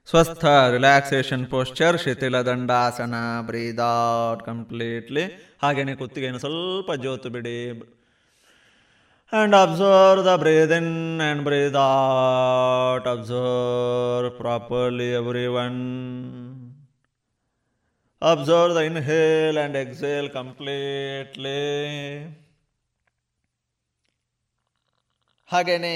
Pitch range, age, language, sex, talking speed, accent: 120-155 Hz, 20-39, Kannada, male, 75 wpm, native